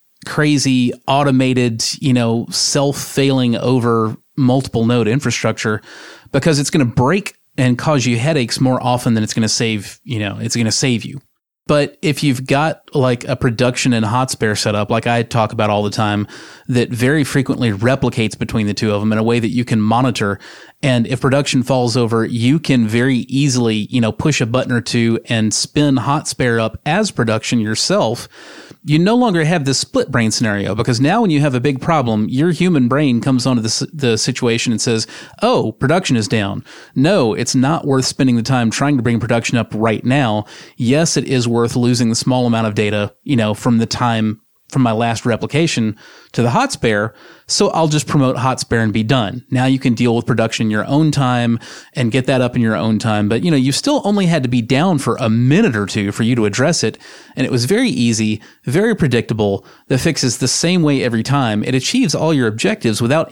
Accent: American